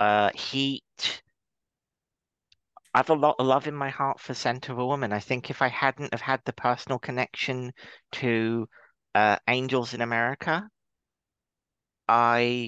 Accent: British